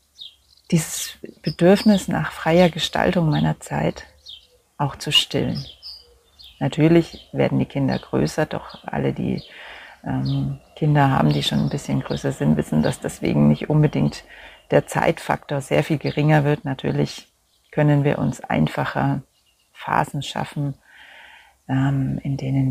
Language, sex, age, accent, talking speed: German, female, 40-59, German, 125 wpm